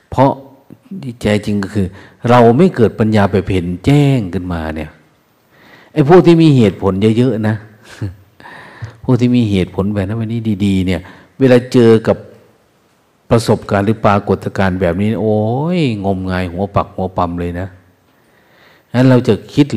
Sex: male